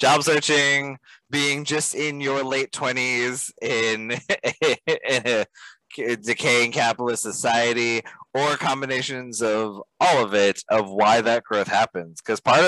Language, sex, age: English, male, 20-39